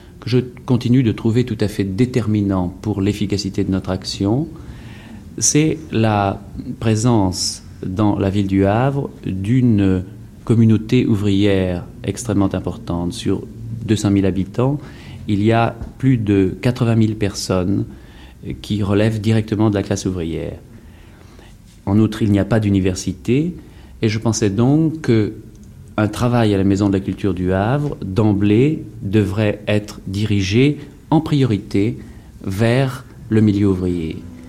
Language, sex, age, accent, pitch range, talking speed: French, male, 40-59, French, 100-120 Hz, 135 wpm